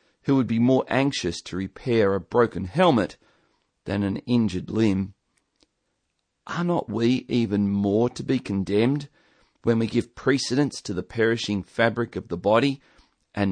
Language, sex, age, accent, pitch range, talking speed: English, male, 40-59, Australian, 100-130 Hz, 150 wpm